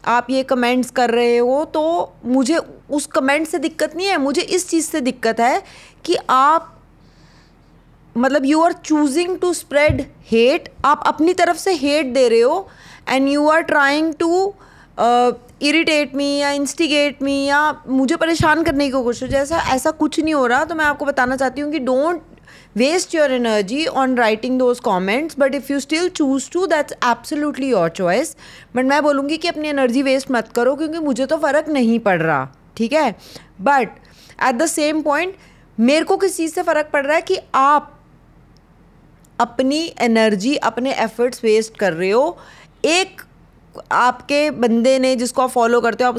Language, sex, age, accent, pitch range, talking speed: Hindi, female, 30-49, native, 240-310 Hz, 180 wpm